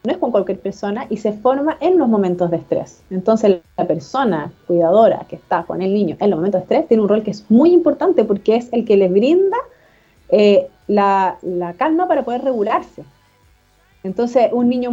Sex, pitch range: female, 185-250 Hz